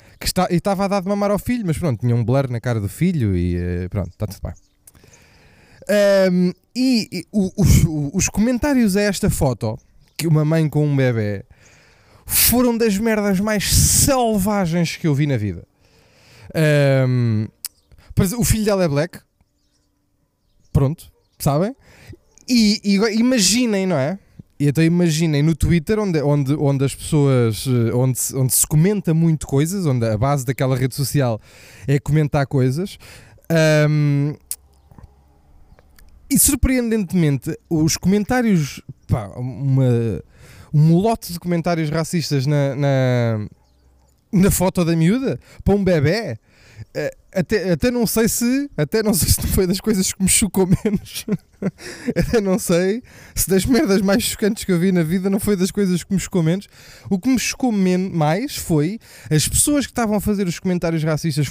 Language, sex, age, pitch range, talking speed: Portuguese, male, 20-39, 125-195 Hz, 160 wpm